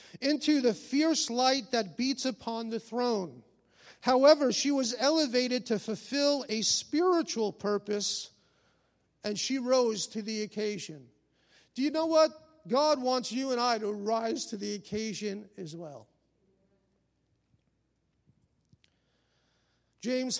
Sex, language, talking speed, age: male, English, 120 wpm, 50-69